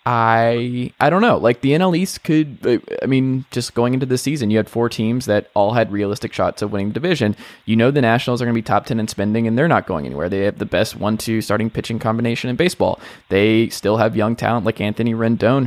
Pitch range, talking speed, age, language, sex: 110-150 Hz, 240 wpm, 20-39, English, male